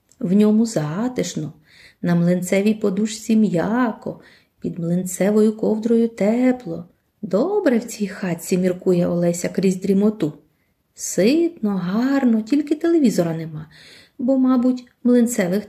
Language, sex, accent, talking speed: Ukrainian, female, native, 105 wpm